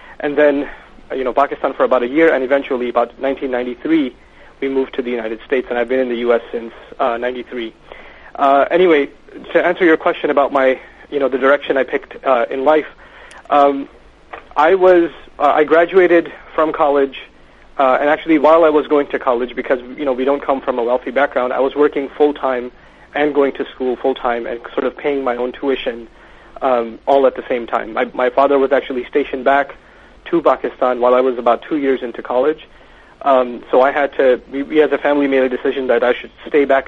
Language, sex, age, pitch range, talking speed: English, male, 40-59, 125-145 Hz, 210 wpm